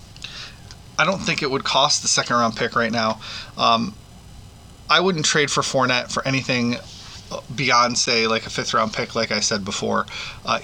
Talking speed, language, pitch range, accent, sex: 180 wpm, English, 110-130 Hz, American, male